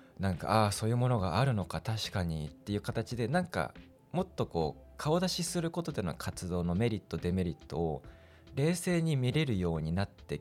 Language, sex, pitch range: Japanese, male, 85-140 Hz